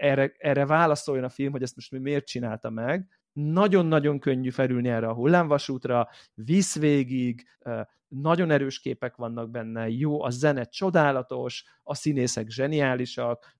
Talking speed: 135 wpm